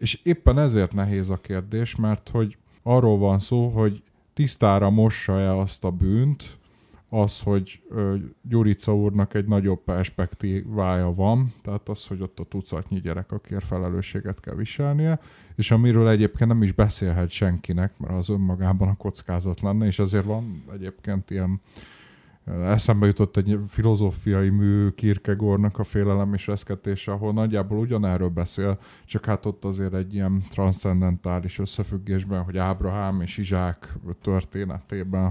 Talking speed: 135 wpm